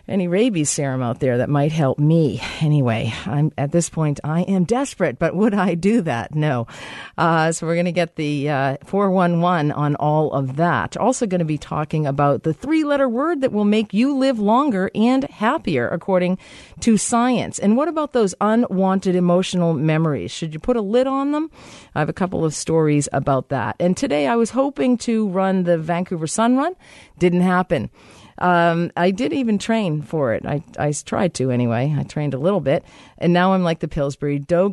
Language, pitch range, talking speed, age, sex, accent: English, 150-215 Hz, 200 wpm, 50-69, female, American